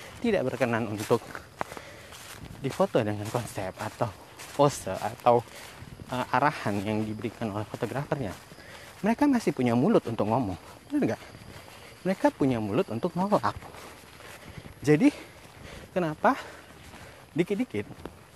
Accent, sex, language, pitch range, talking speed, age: native, male, Indonesian, 115-170 Hz, 105 wpm, 30-49